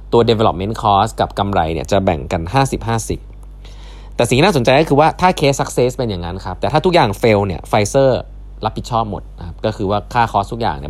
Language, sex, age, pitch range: Thai, male, 20-39, 95-125 Hz